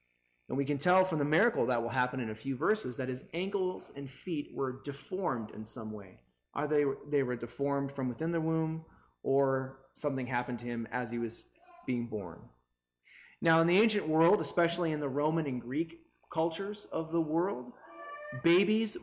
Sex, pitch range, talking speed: male, 130-175 Hz, 185 wpm